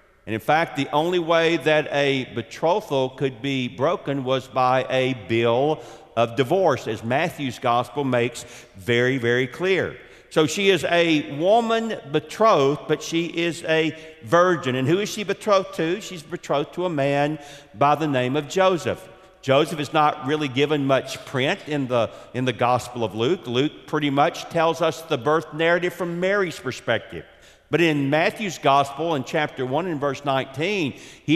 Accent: American